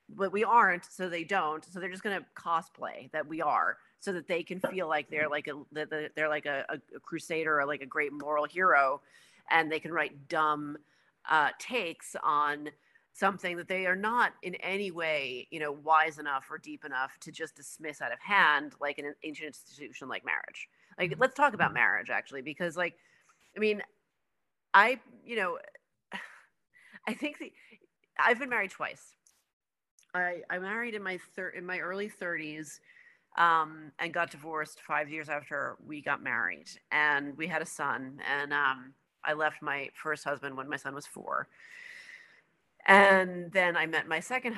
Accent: American